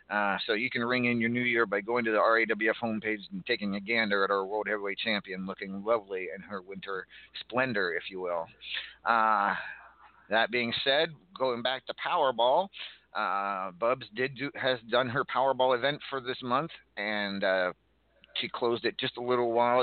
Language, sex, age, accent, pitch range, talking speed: English, male, 40-59, American, 115-150 Hz, 185 wpm